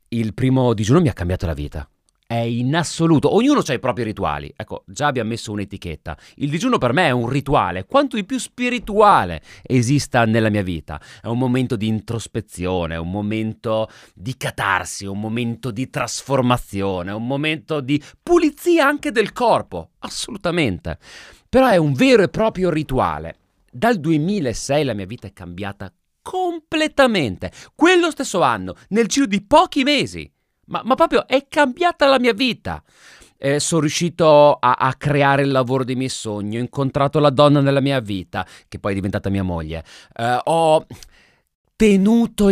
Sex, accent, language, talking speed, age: male, native, Italian, 165 wpm, 30-49